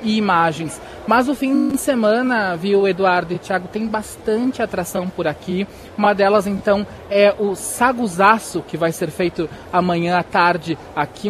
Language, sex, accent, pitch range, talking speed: Portuguese, male, Brazilian, 180-210 Hz, 160 wpm